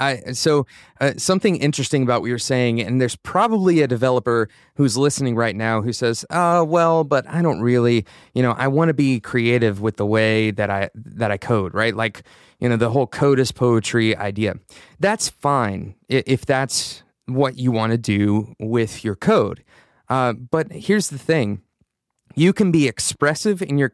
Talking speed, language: 185 wpm, English